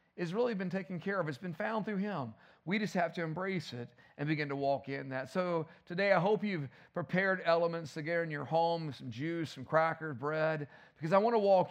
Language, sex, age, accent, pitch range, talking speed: English, male, 40-59, American, 150-195 Hz, 225 wpm